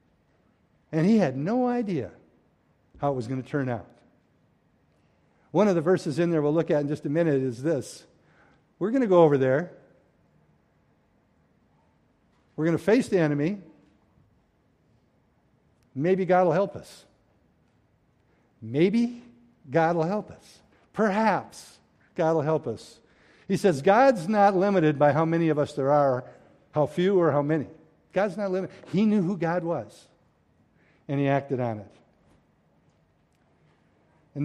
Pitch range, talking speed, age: 125-175 Hz, 150 wpm, 60-79